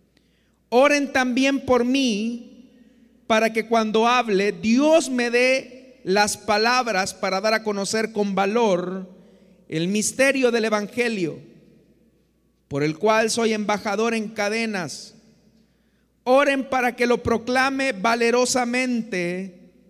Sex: male